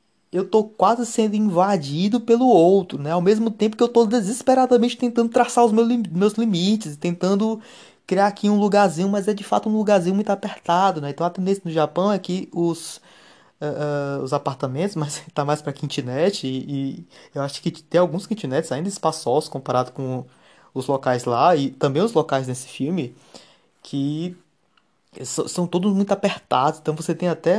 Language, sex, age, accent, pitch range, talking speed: Portuguese, male, 20-39, Brazilian, 145-210 Hz, 175 wpm